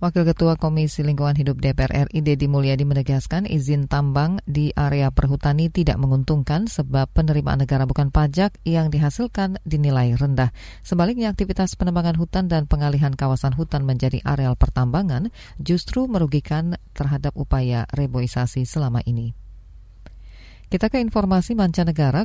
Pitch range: 135-170 Hz